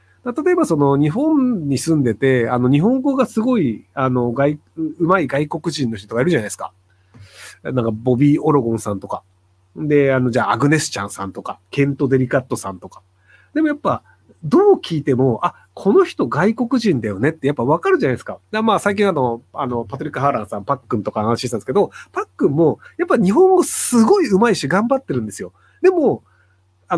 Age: 30-49